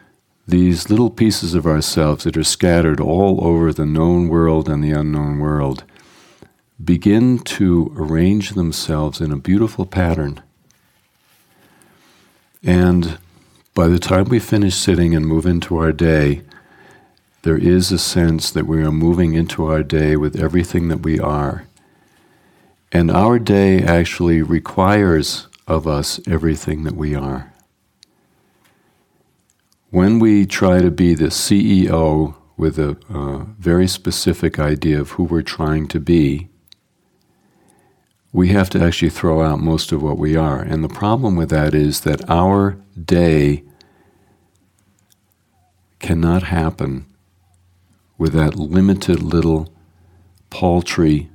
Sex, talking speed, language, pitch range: male, 130 wpm, English, 80-90 Hz